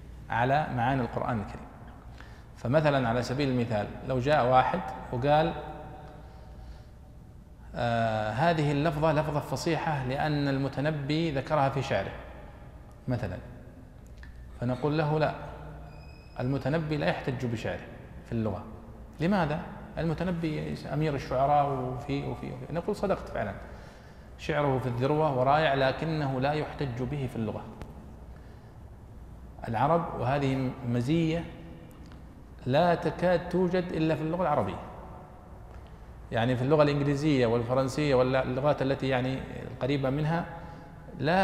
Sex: male